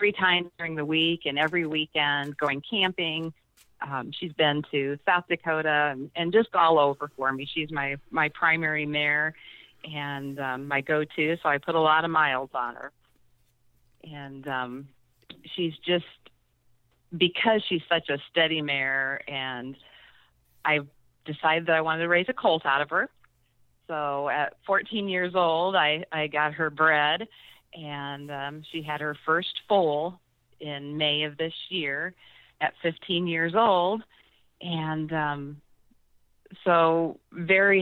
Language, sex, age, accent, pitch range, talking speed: English, female, 40-59, American, 140-170 Hz, 150 wpm